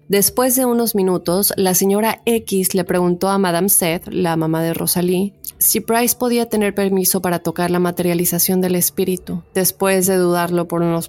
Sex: female